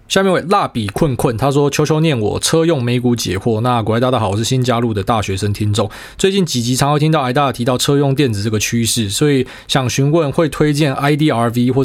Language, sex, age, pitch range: Chinese, male, 20-39, 110-145 Hz